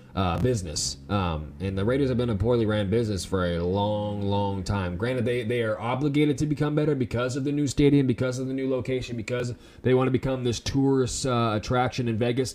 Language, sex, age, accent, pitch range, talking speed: English, male, 20-39, American, 100-130 Hz, 220 wpm